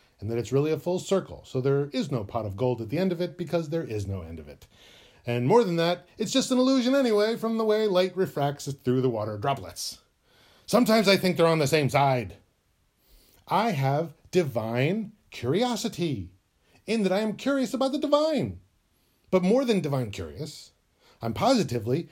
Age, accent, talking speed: 40-59, American, 195 wpm